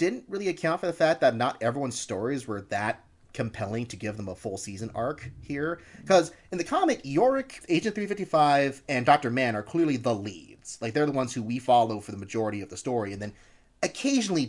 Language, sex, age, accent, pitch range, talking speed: English, male, 30-49, American, 115-155 Hz, 210 wpm